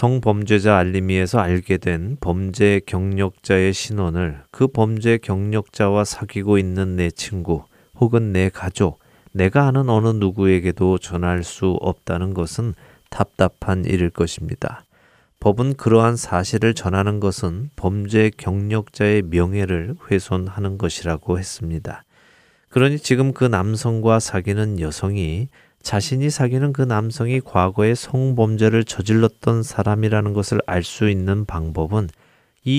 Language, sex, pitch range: Korean, male, 95-115 Hz